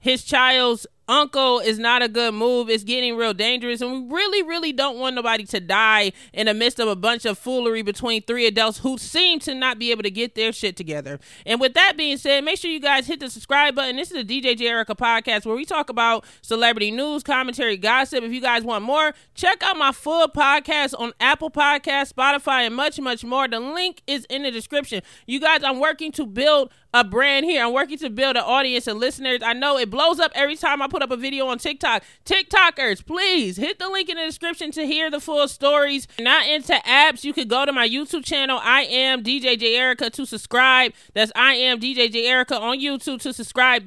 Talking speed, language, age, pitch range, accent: 230 wpm, English, 20-39, 240-290 Hz, American